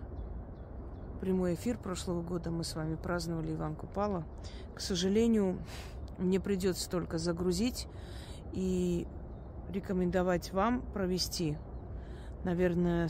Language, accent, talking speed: Russian, native, 95 wpm